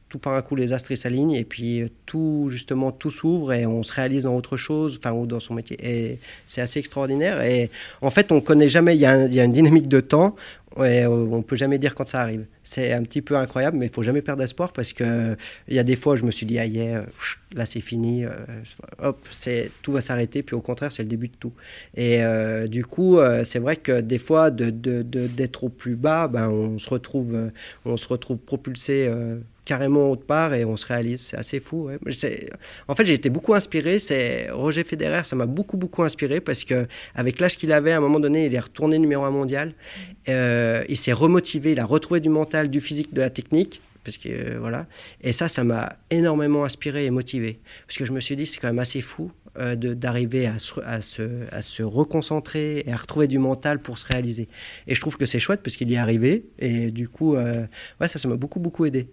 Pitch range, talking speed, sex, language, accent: 115-145 Hz, 235 wpm, male, French, French